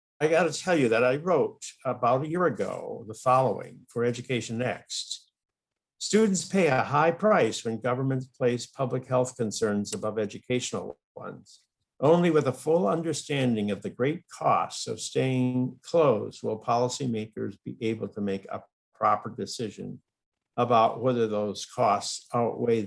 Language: English